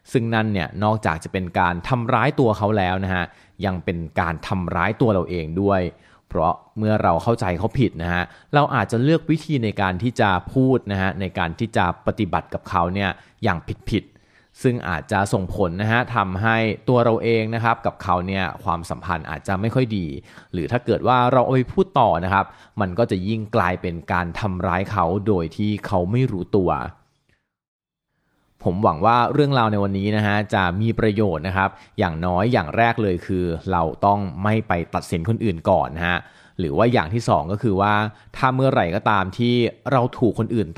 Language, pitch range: Thai, 90-115 Hz